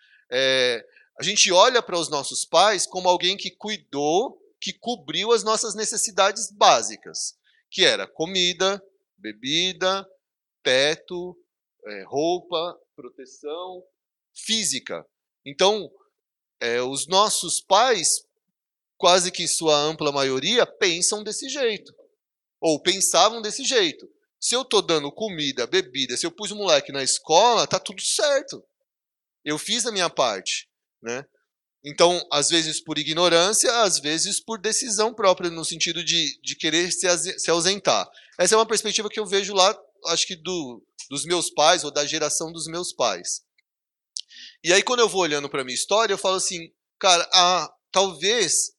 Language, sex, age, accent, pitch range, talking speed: Portuguese, male, 30-49, Brazilian, 165-215 Hz, 145 wpm